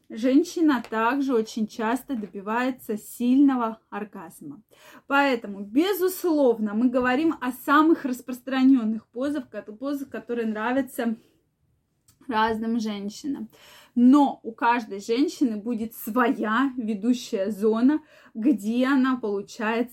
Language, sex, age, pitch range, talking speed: Russian, female, 20-39, 220-275 Hz, 90 wpm